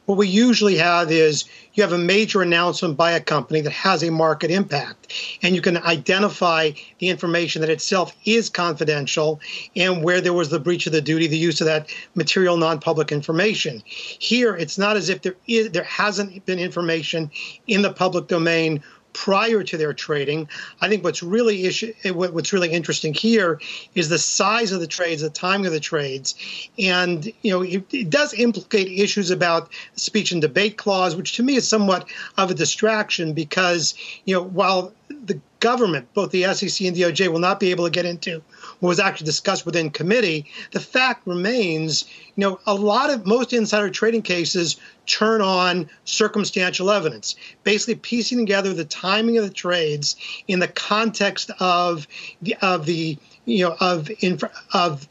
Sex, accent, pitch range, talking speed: male, American, 165-205 Hz, 175 wpm